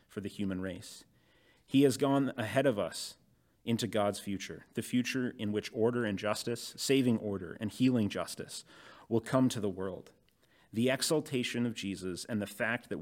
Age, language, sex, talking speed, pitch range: 30-49, English, male, 175 wpm, 100-120 Hz